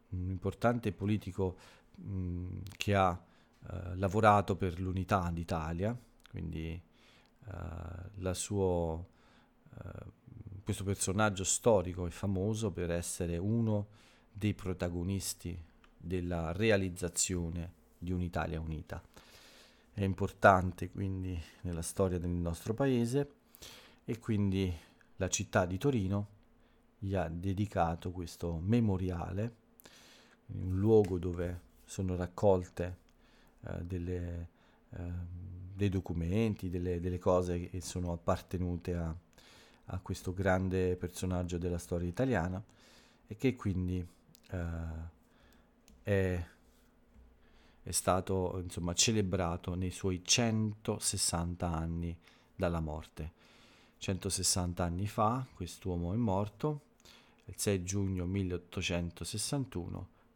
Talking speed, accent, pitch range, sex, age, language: 100 wpm, native, 85-105 Hz, male, 40-59, Italian